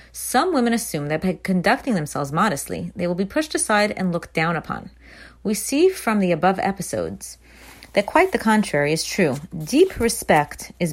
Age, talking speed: 30-49, 175 wpm